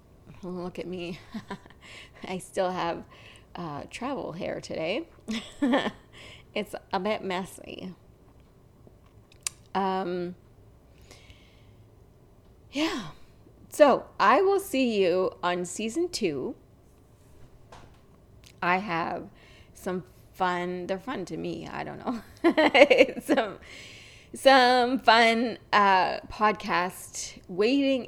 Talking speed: 90 wpm